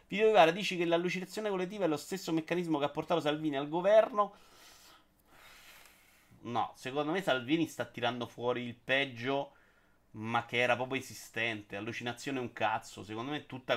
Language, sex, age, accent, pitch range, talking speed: Italian, male, 30-49, native, 120-160 Hz, 155 wpm